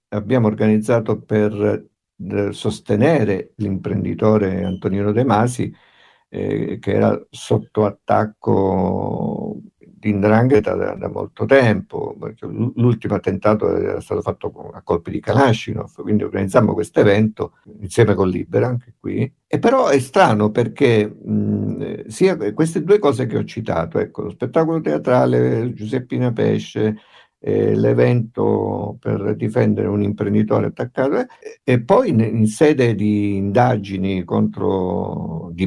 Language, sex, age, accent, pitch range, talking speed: Italian, male, 50-69, native, 100-115 Hz, 125 wpm